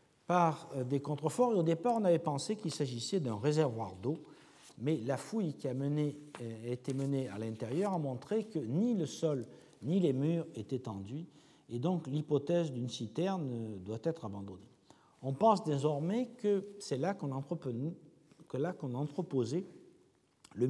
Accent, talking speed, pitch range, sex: French, 160 wpm, 125-170 Hz, male